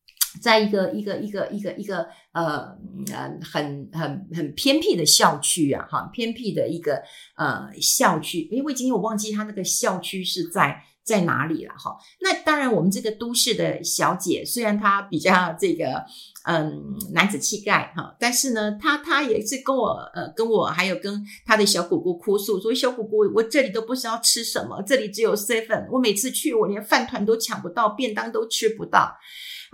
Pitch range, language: 195-255 Hz, Chinese